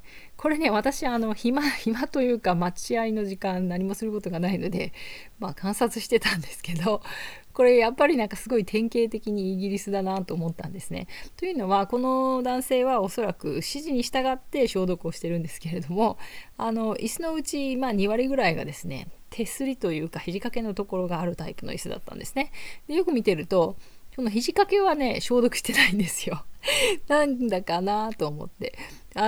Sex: female